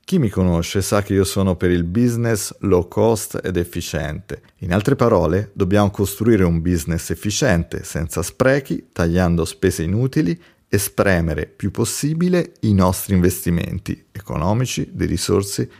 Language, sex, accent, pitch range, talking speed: Italian, male, native, 85-110 Hz, 140 wpm